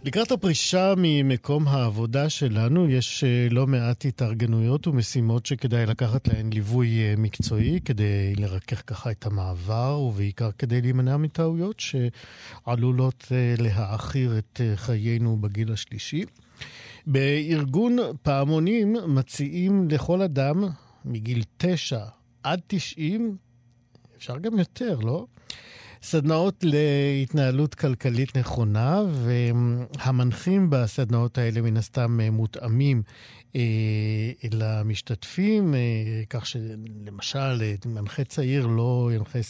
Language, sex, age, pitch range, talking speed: Hebrew, male, 50-69, 115-145 Hz, 90 wpm